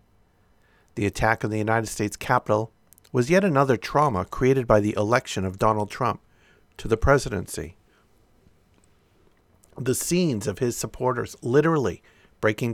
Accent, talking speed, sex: American, 130 wpm, male